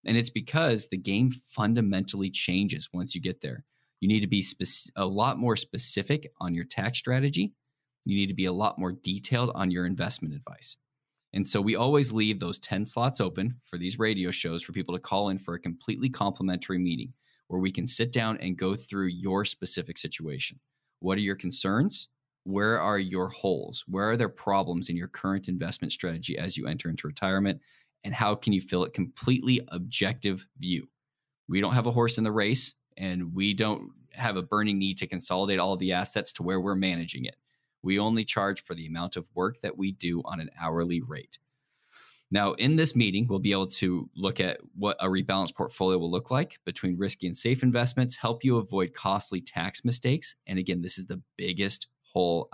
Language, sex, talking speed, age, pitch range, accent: English, male, 200 wpm, 10-29, 90-120 Hz, American